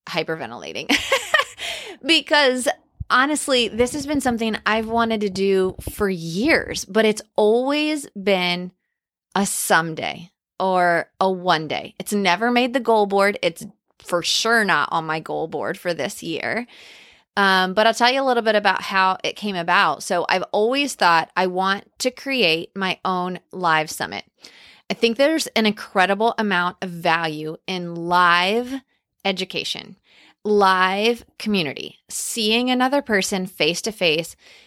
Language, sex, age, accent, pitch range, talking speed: English, female, 20-39, American, 175-225 Hz, 140 wpm